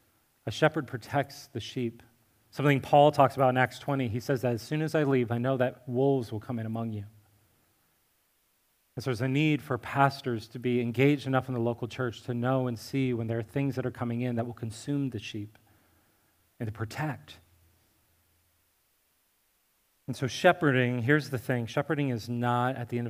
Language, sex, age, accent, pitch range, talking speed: English, male, 30-49, American, 115-160 Hz, 195 wpm